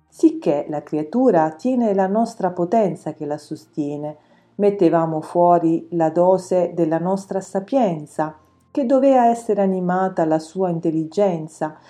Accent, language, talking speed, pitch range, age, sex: native, Italian, 120 wpm, 155-200 Hz, 40-59, female